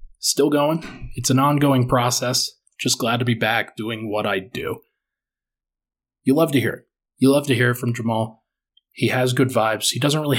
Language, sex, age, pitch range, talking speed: English, male, 20-39, 115-130 Hz, 195 wpm